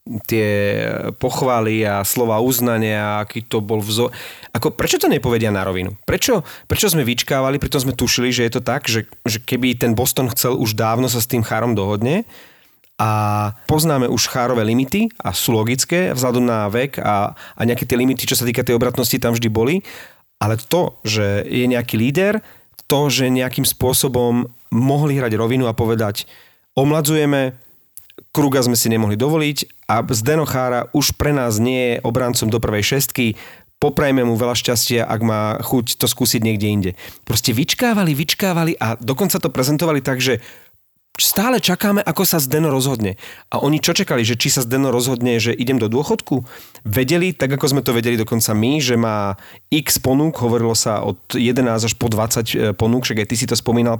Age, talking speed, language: 30-49, 180 wpm, Slovak